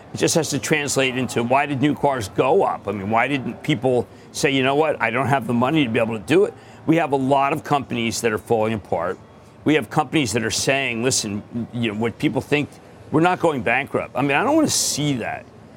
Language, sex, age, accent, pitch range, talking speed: English, male, 50-69, American, 110-140 Hz, 250 wpm